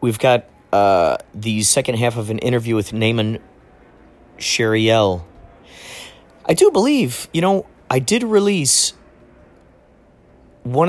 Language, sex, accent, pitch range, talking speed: English, male, American, 95-120 Hz, 115 wpm